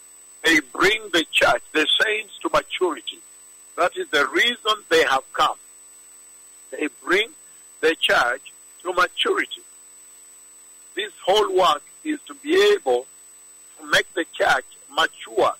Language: English